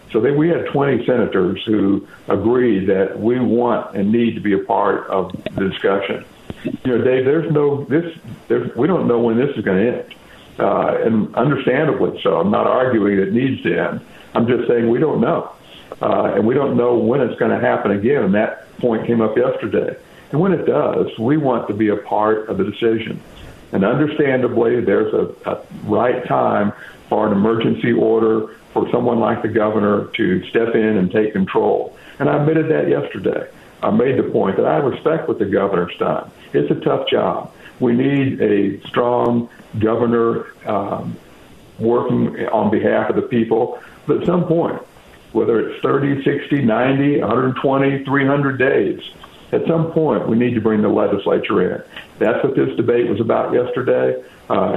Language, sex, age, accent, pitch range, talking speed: English, male, 60-79, American, 110-135 Hz, 185 wpm